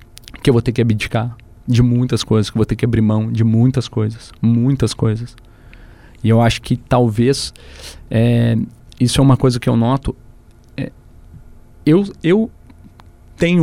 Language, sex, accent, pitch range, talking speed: Portuguese, male, Brazilian, 105-125 Hz, 165 wpm